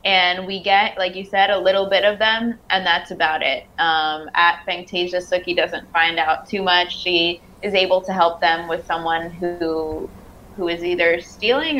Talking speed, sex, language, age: 190 wpm, female, English, 20-39